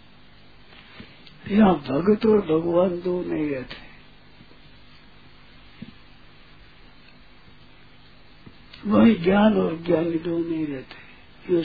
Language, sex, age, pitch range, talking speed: Hindi, male, 60-79, 160-210 Hz, 75 wpm